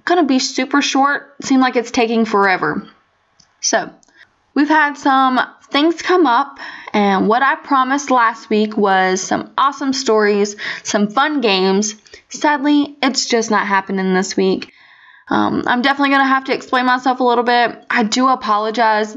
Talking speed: 165 wpm